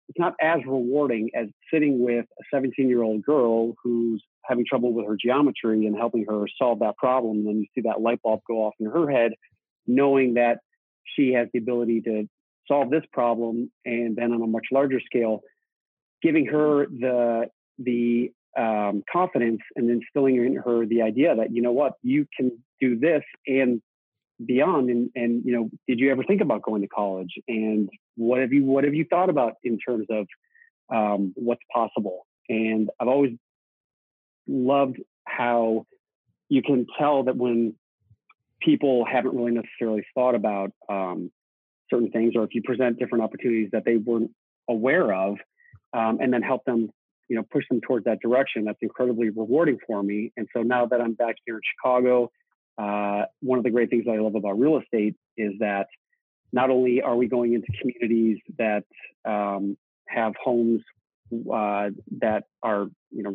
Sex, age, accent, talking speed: male, 40-59, American, 180 wpm